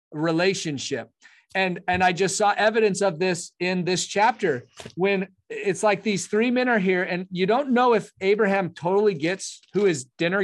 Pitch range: 175-225 Hz